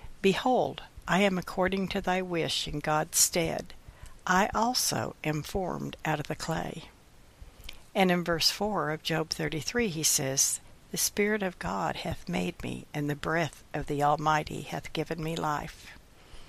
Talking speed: 160 wpm